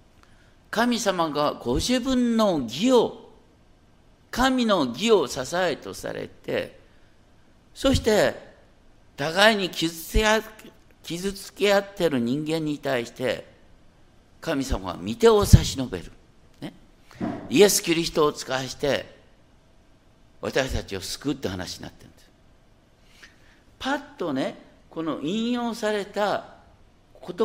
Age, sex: 50-69, male